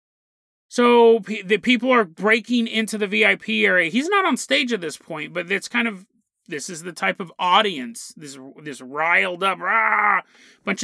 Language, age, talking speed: English, 30-49, 175 wpm